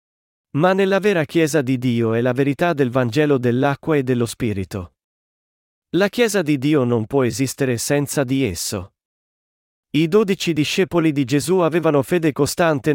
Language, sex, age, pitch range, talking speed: Italian, male, 40-59, 125-155 Hz, 155 wpm